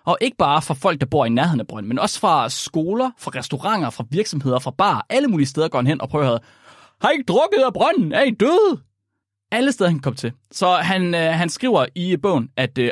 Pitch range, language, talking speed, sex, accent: 125-185 Hz, Danish, 235 wpm, male, native